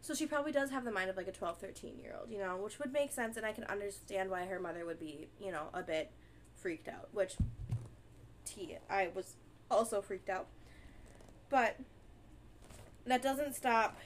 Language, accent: English, American